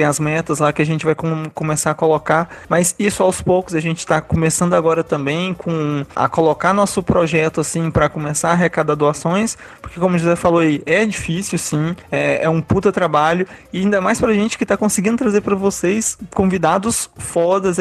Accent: Brazilian